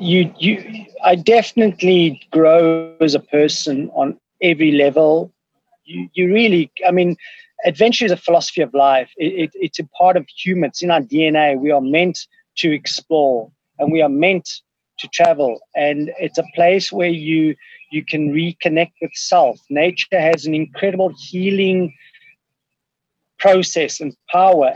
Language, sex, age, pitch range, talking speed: English, male, 30-49, 155-195 Hz, 150 wpm